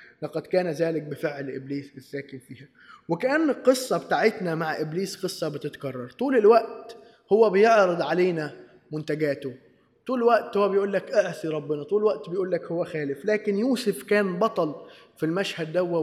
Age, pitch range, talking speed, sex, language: 20-39, 160-210 Hz, 155 wpm, male, Arabic